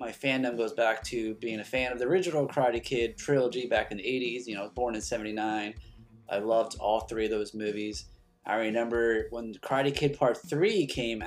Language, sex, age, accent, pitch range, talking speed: English, male, 30-49, American, 110-140 Hz, 215 wpm